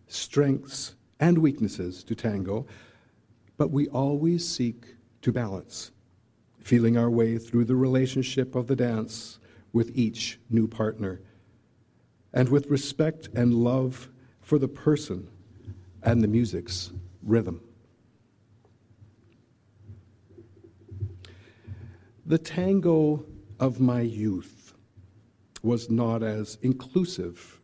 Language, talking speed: English, 100 wpm